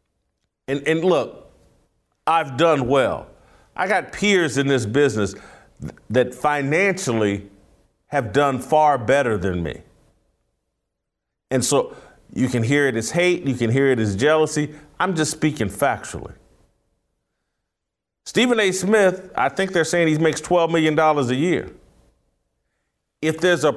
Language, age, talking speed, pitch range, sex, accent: English, 40-59, 140 wpm, 135-180 Hz, male, American